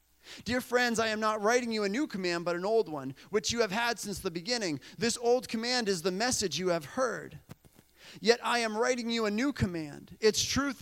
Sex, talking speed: male, 220 wpm